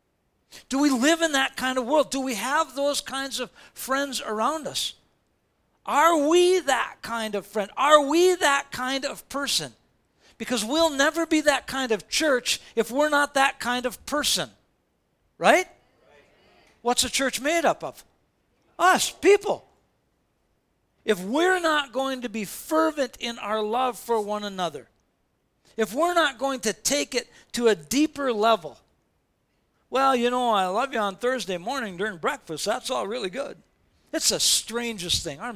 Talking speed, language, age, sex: 165 wpm, English, 50-69, male